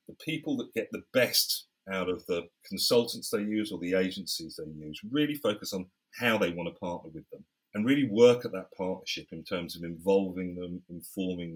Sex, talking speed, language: male, 200 wpm, English